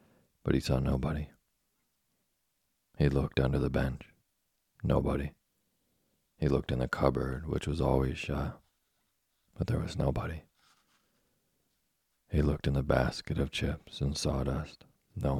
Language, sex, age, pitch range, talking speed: English, male, 40-59, 65-75 Hz, 130 wpm